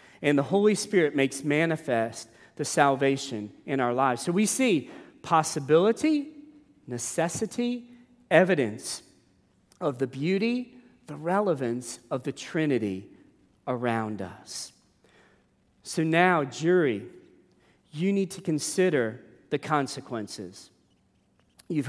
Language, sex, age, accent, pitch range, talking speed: English, male, 40-59, American, 135-215 Hz, 100 wpm